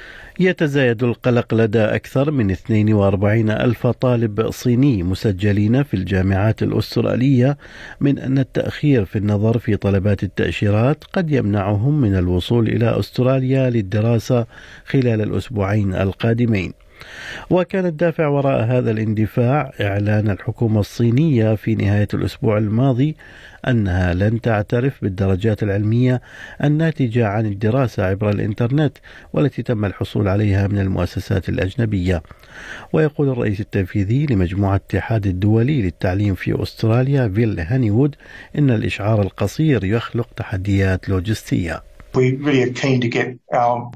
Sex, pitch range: male, 110-135 Hz